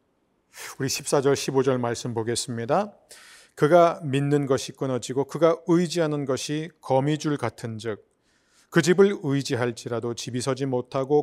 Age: 40-59